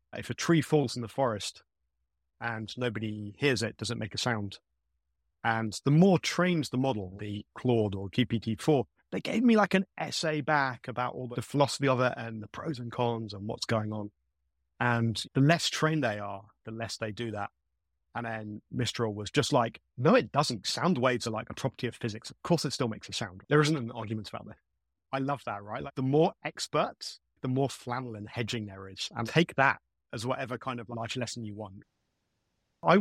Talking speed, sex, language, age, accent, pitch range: 210 wpm, male, English, 30-49, British, 105-130 Hz